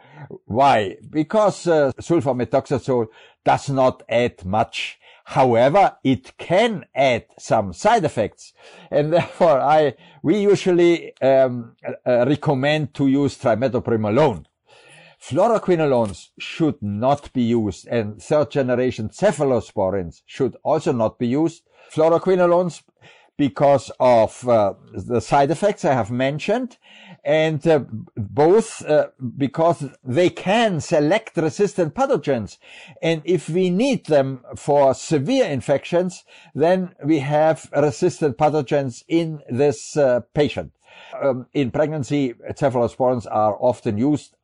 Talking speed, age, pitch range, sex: 115 wpm, 50-69, 120-160 Hz, male